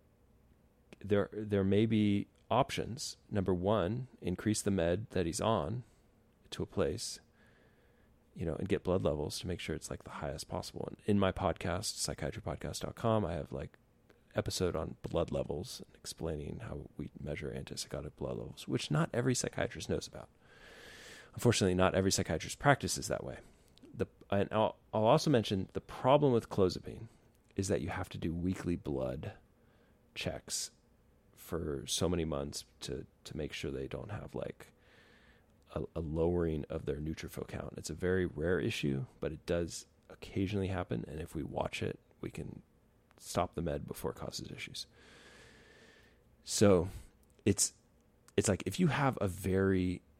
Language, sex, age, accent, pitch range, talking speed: English, male, 30-49, American, 80-105 Hz, 160 wpm